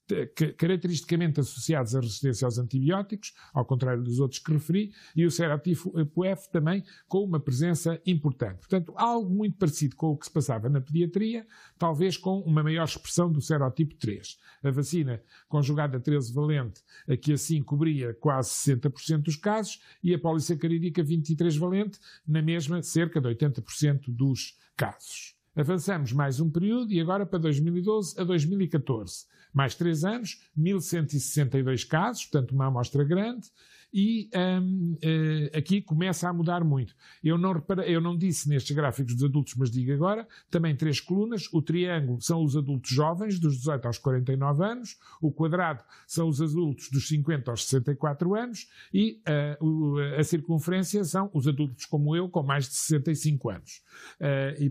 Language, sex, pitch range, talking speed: Portuguese, male, 140-180 Hz, 150 wpm